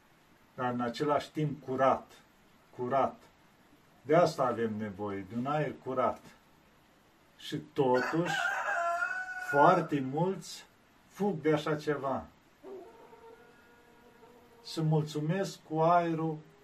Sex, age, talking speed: male, 50-69, 95 wpm